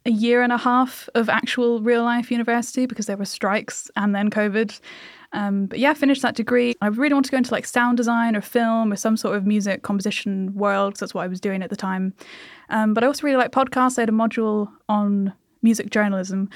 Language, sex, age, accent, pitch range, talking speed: English, female, 10-29, British, 200-245 Hz, 235 wpm